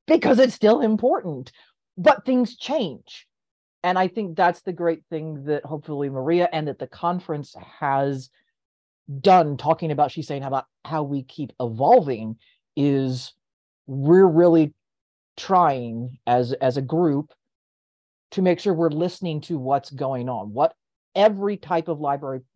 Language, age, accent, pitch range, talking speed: English, 40-59, American, 130-165 Hz, 145 wpm